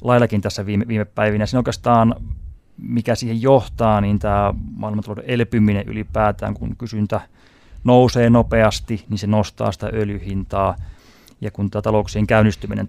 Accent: native